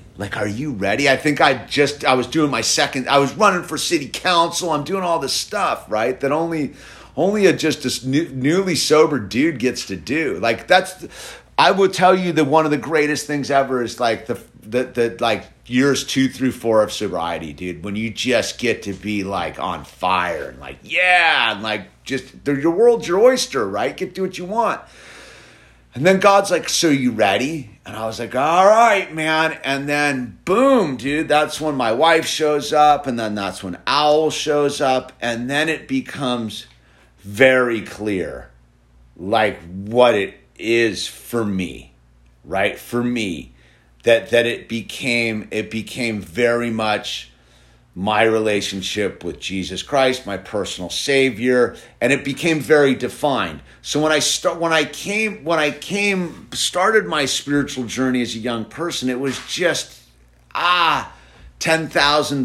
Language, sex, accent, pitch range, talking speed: English, male, American, 110-155 Hz, 175 wpm